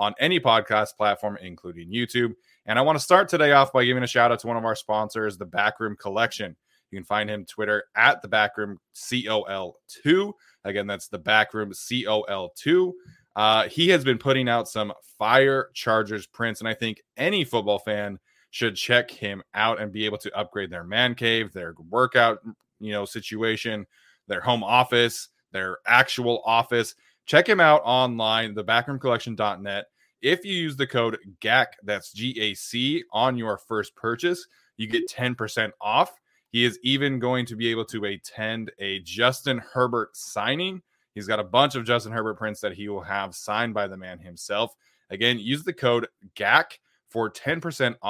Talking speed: 180 wpm